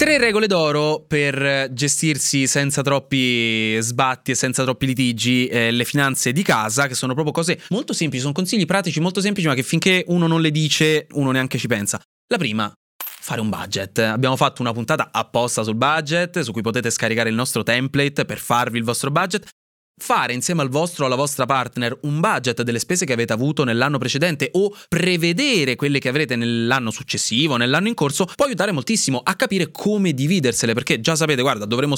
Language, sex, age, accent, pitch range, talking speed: Italian, male, 20-39, native, 120-165 Hz, 190 wpm